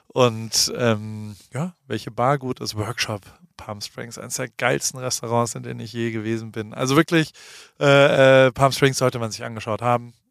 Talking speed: 175 wpm